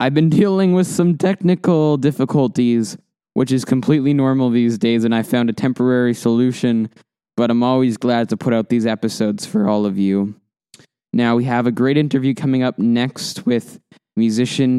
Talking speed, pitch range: 175 wpm, 115-145 Hz